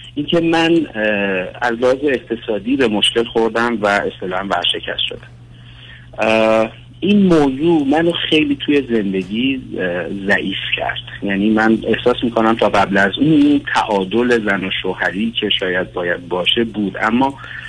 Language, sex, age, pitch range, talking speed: Persian, male, 50-69, 100-140 Hz, 130 wpm